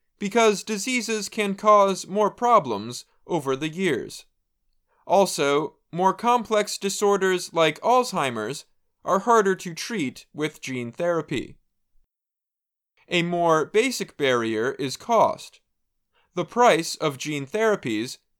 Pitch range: 160-210 Hz